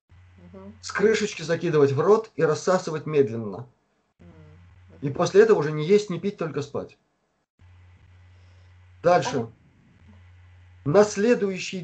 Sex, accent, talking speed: male, native, 105 wpm